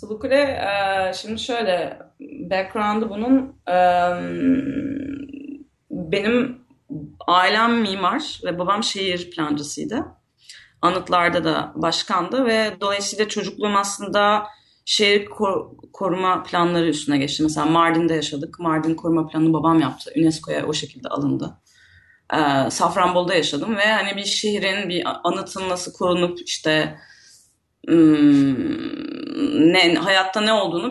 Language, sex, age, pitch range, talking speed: Turkish, female, 30-49, 160-220 Hz, 110 wpm